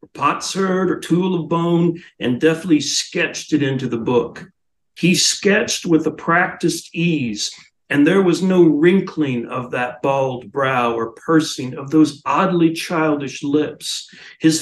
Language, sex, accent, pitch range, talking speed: English, male, American, 140-170 Hz, 150 wpm